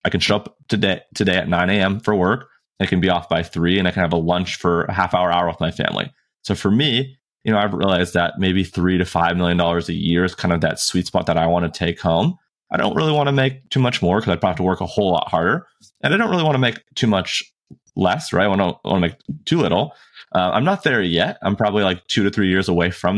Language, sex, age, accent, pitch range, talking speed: English, male, 30-49, American, 85-105 Hz, 285 wpm